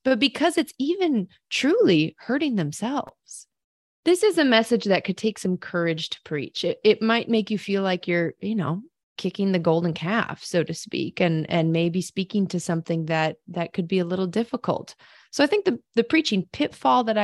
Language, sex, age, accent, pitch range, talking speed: English, female, 30-49, American, 175-240 Hz, 195 wpm